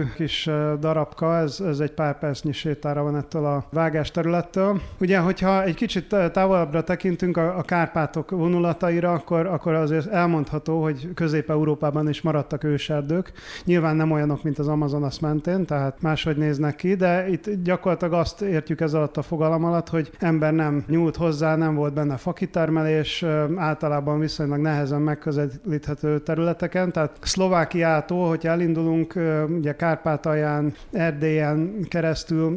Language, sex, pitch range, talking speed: Hungarian, male, 150-170 Hz, 135 wpm